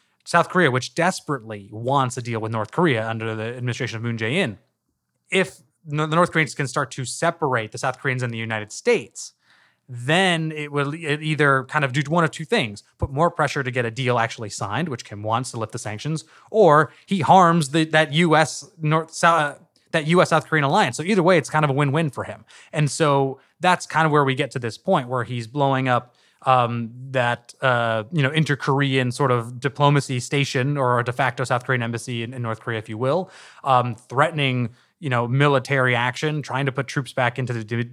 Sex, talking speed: male, 205 wpm